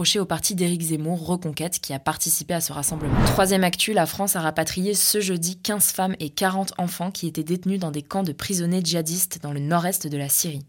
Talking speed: 220 wpm